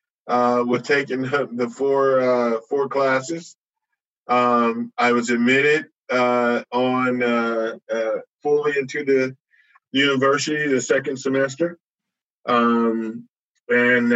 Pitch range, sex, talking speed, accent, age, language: 120-135 Hz, male, 110 wpm, American, 50-69, English